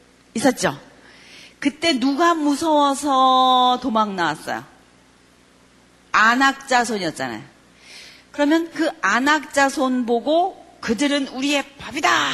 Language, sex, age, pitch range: Korean, female, 40-59, 220-285 Hz